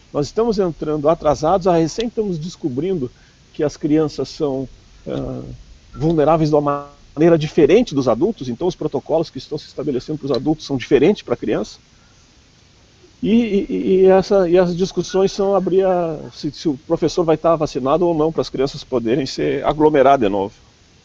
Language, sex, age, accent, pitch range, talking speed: Portuguese, male, 50-69, Brazilian, 135-190 Hz, 175 wpm